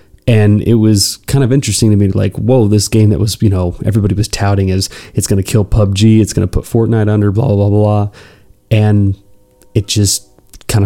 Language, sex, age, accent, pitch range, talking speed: English, male, 20-39, American, 100-115 Hz, 215 wpm